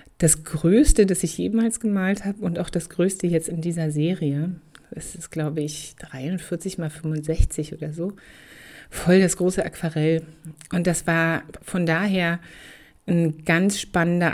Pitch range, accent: 160-190 Hz, German